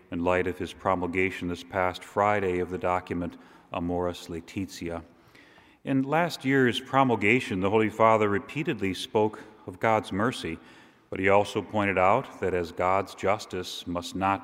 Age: 40-59